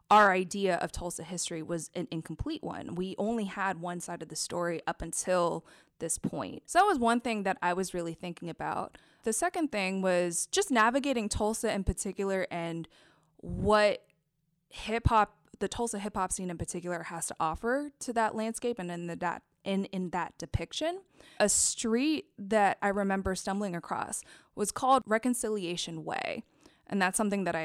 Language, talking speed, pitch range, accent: English, 175 wpm, 175-220 Hz, American